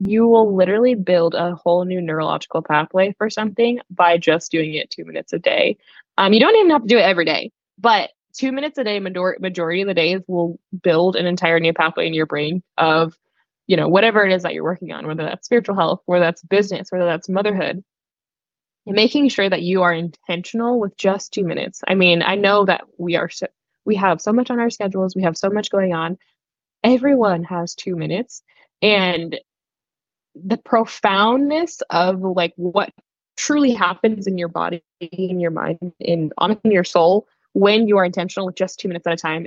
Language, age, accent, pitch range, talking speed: English, 10-29, American, 175-215 Hz, 200 wpm